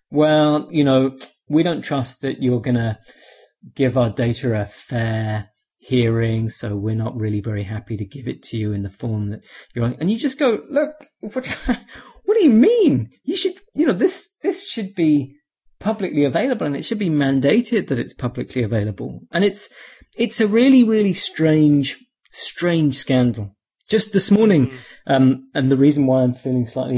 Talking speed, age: 180 wpm, 30-49